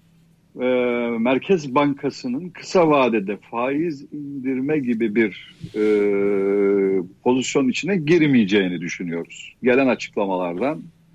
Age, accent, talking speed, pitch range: 60-79, native, 80 wpm, 120-160 Hz